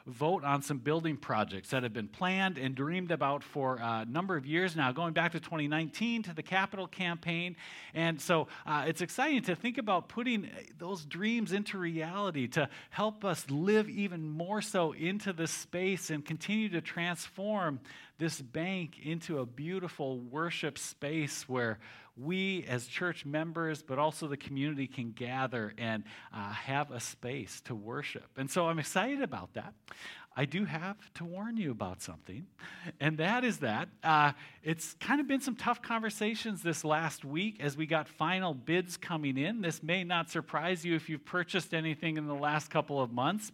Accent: American